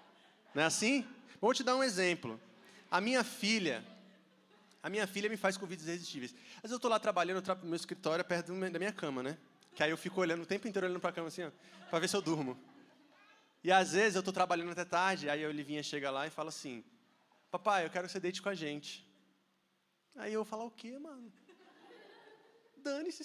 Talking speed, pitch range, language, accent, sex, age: 220 wpm, 165-225 Hz, Portuguese, Brazilian, male, 20-39